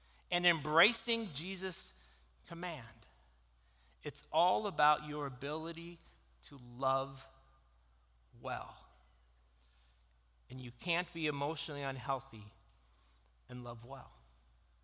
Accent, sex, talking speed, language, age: American, male, 85 wpm, English, 40-59